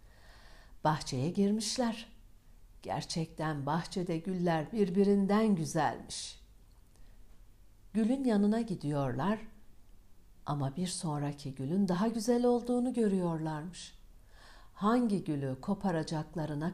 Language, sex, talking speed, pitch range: Turkish, female, 75 wpm, 135-190 Hz